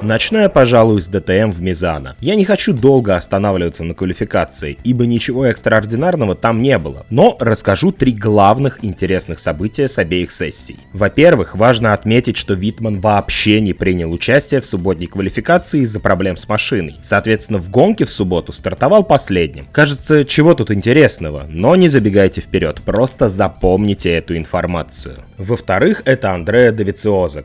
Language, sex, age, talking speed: Russian, male, 20-39, 150 wpm